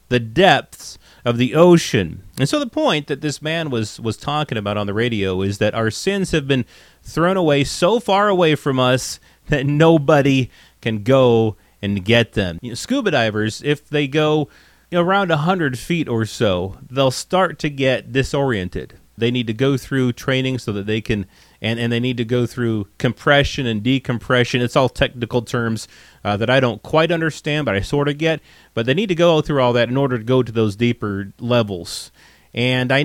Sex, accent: male, American